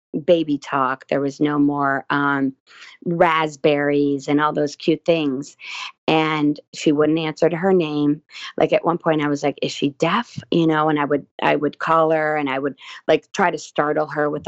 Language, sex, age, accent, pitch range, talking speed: English, female, 30-49, American, 140-160 Hz, 200 wpm